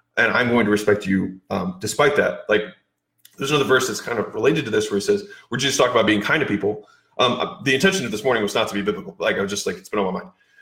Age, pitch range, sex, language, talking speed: 30-49, 145-225 Hz, male, English, 290 wpm